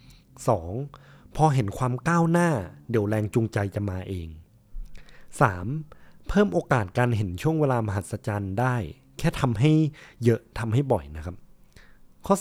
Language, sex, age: Thai, male, 20-39